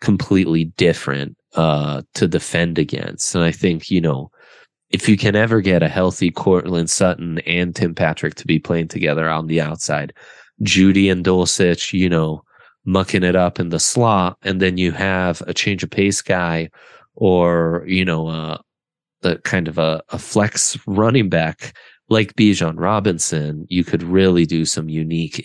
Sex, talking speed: male, 170 wpm